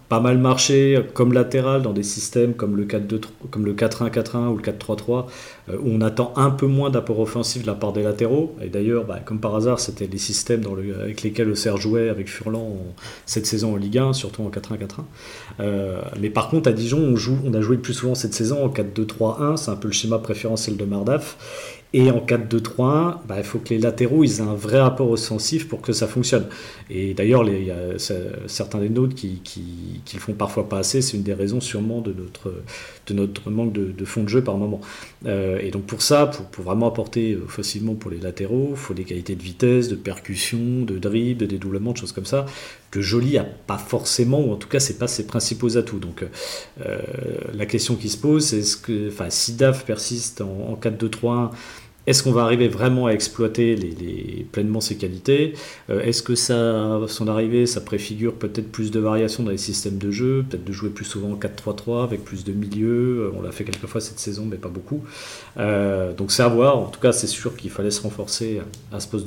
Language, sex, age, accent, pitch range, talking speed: French, male, 40-59, French, 100-120 Hz, 235 wpm